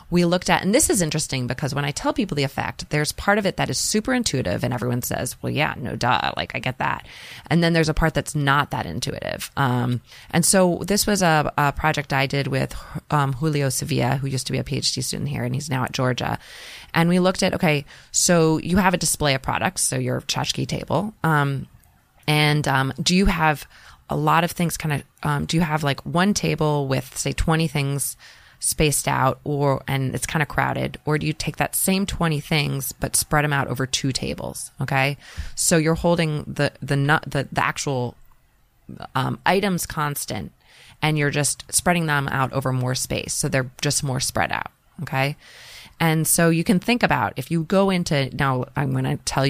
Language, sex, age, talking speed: English, female, 20-39, 210 wpm